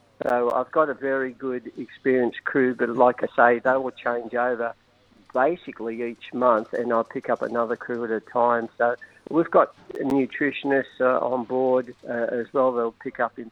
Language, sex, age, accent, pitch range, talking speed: English, male, 50-69, Australian, 120-130 Hz, 185 wpm